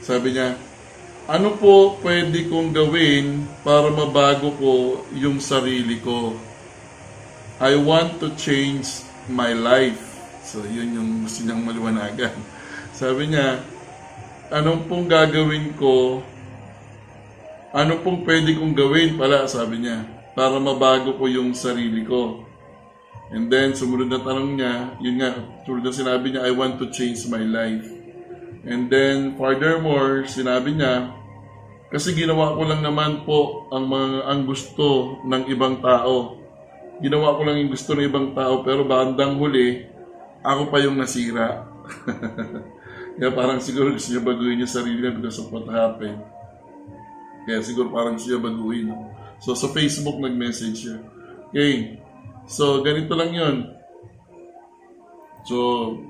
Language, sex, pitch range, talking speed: Filipino, male, 120-145 Hz, 135 wpm